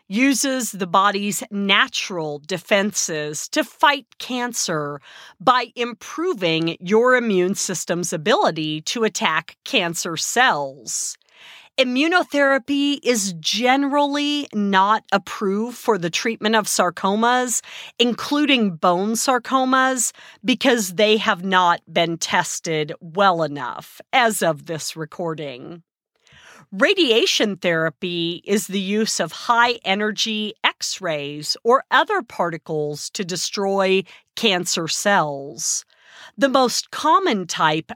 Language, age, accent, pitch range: English, 40-59, American, 170-245 Hz